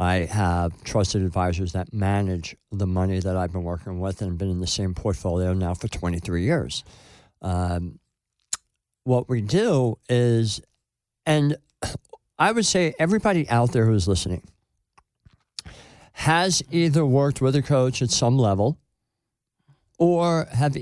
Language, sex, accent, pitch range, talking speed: English, male, American, 100-155 Hz, 140 wpm